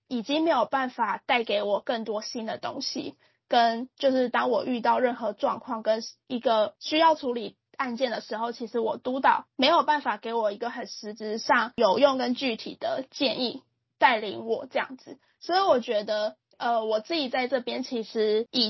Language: Chinese